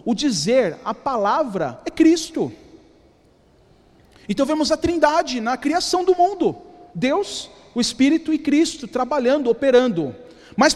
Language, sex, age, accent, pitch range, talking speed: Portuguese, male, 40-59, Brazilian, 250-315 Hz, 125 wpm